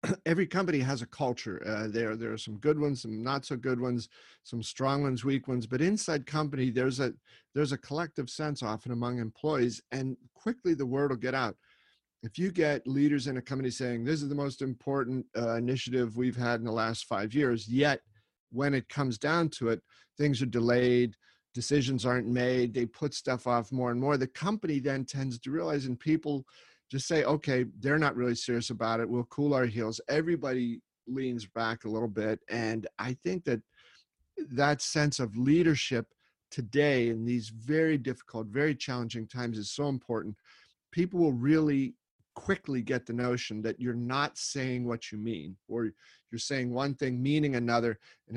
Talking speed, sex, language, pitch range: 185 wpm, male, English, 120-145 Hz